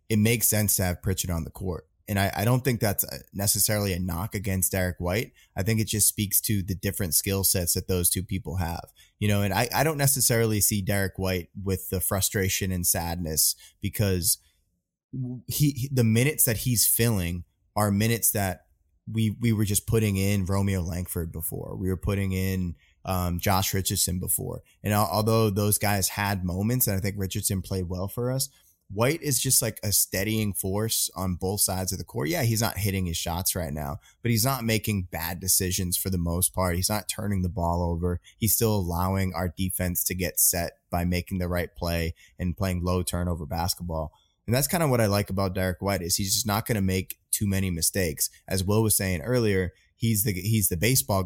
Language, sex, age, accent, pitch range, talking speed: English, male, 20-39, American, 90-105 Hz, 210 wpm